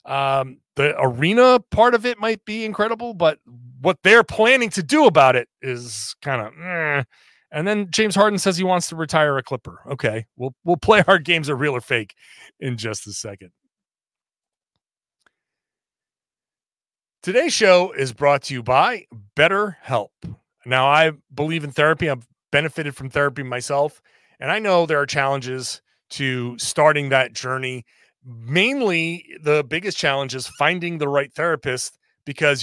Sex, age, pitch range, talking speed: male, 30-49, 130-170 Hz, 155 wpm